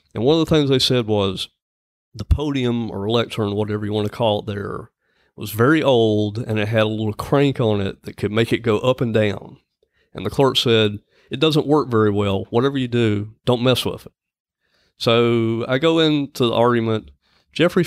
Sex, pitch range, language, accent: male, 105-135 Hz, English, American